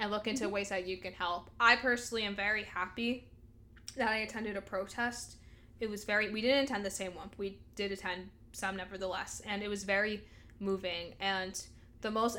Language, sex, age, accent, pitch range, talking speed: English, female, 10-29, American, 195-235 Hz, 200 wpm